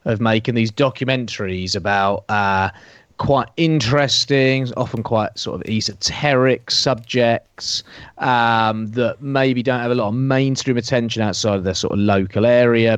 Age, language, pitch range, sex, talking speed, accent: 30-49, English, 110-135 Hz, male, 145 wpm, British